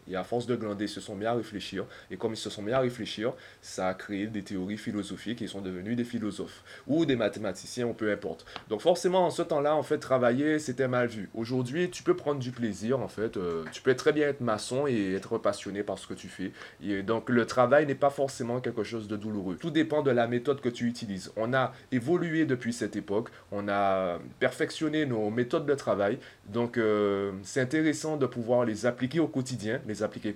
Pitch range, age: 105-135 Hz, 20-39